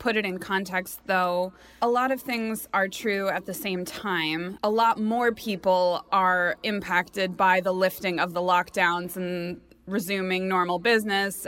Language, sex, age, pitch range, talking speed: English, female, 20-39, 185-225 Hz, 160 wpm